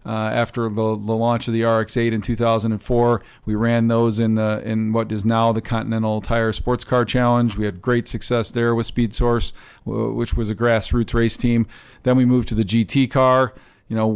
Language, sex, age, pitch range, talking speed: English, male, 40-59, 115-125 Hz, 205 wpm